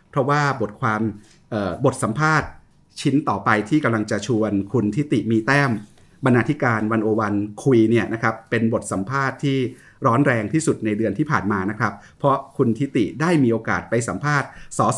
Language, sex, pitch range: Thai, male, 105-135 Hz